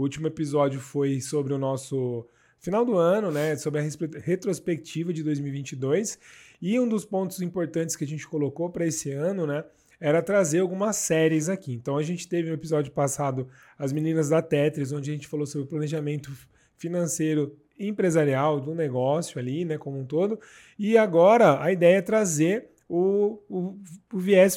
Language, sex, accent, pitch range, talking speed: Portuguese, male, Brazilian, 150-185 Hz, 175 wpm